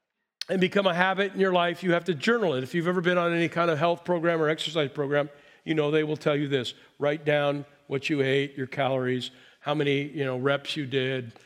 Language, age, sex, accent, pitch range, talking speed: English, 50-69, male, American, 145-175 Hz, 240 wpm